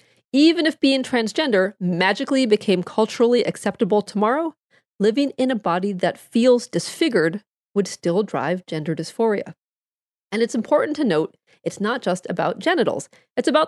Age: 40-59